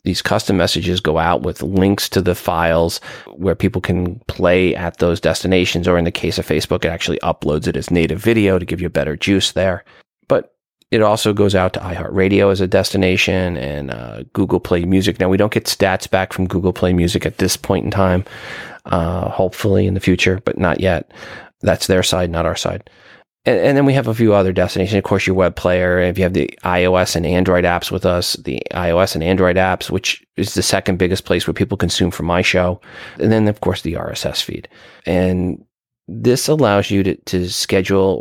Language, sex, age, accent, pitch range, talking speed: English, male, 30-49, American, 90-105 Hz, 215 wpm